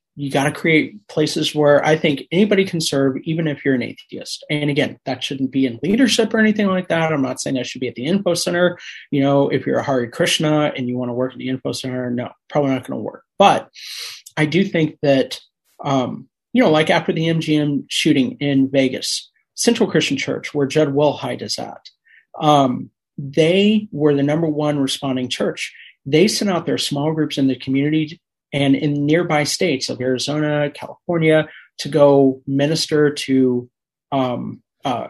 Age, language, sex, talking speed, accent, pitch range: 30-49, English, male, 190 wpm, American, 140-165 Hz